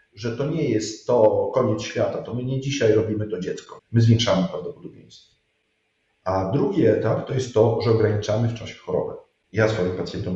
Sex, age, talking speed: male, 40-59, 180 wpm